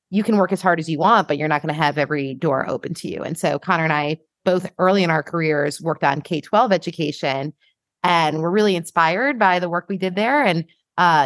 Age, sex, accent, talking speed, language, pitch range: 30-49, female, American, 240 wpm, English, 165-205 Hz